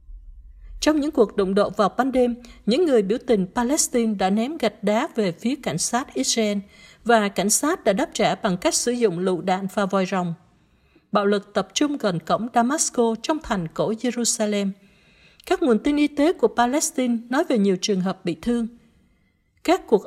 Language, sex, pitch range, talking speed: Vietnamese, female, 205-265 Hz, 190 wpm